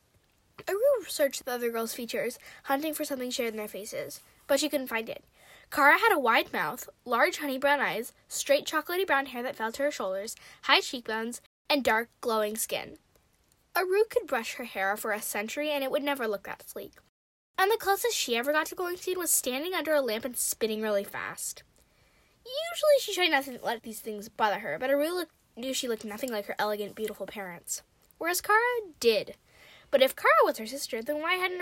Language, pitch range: English, 220-310 Hz